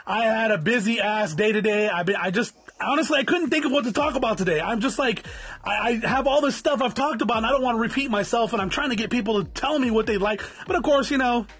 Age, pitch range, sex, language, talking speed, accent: 30-49, 195-245 Hz, male, English, 295 wpm, American